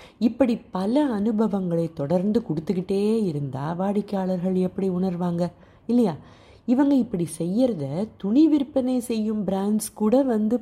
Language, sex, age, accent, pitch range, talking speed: Tamil, female, 30-49, native, 160-220 Hz, 95 wpm